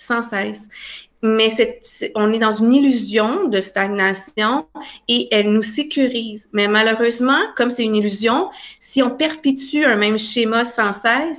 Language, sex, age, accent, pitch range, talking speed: French, female, 30-49, Canadian, 215-280 Hz, 160 wpm